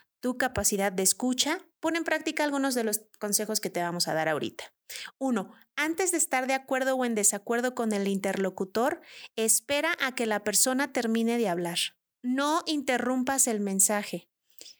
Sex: female